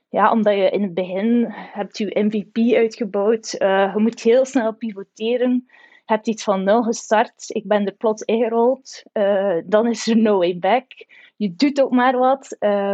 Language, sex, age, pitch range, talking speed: Dutch, female, 20-39, 200-240 Hz, 180 wpm